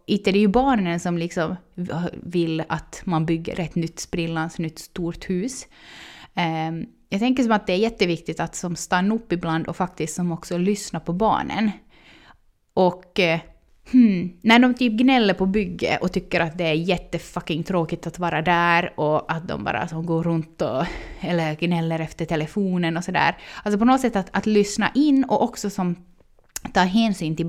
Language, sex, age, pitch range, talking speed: Swedish, female, 20-39, 170-225 Hz, 180 wpm